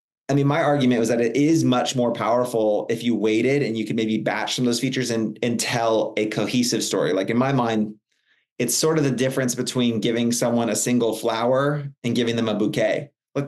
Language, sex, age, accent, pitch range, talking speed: English, male, 30-49, American, 120-145 Hz, 225 wpm